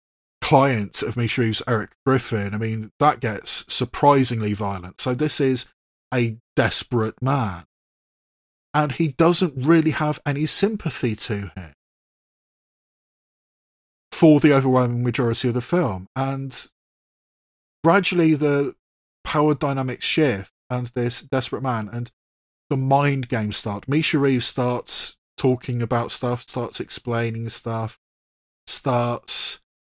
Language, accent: English, British